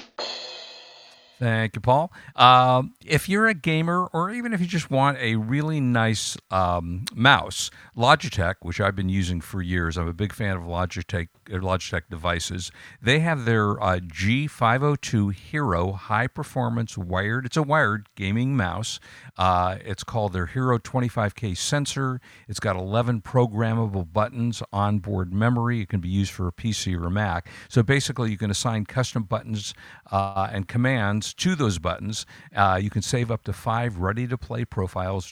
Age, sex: 50-69, male